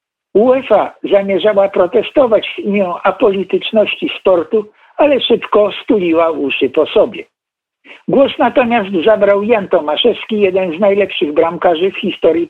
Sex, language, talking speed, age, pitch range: male, Polish, 115 wpm, 60-79, 195-245 Hz